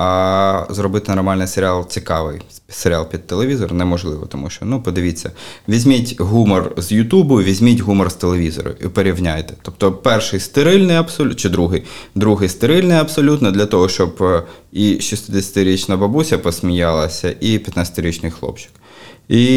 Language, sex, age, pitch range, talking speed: Ukrainian, male, 20-39, 85-100 Hz, 130 wpm